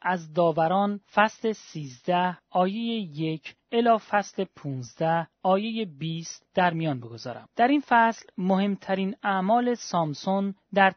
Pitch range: 160-225 Hz